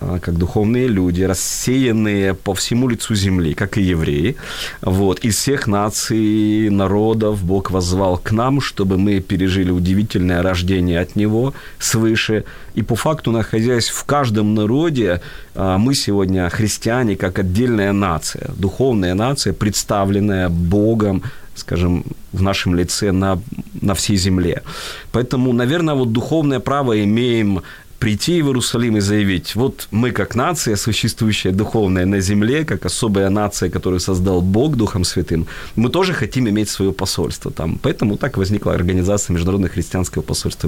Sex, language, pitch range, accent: male, Ukrainian, 95-115 Hz, native